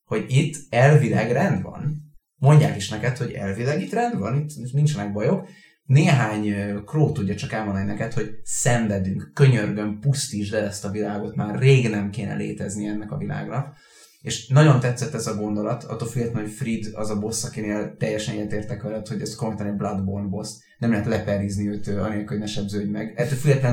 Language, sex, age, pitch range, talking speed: Hungarian, male, 30-49, 105-125 Hz, 180 wpm